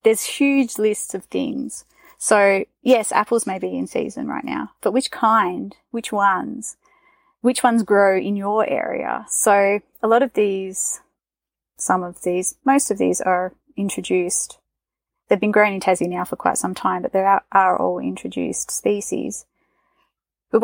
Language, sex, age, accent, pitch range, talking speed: English, female, 30-49, Australian, 185-240 Hz, 165 wpm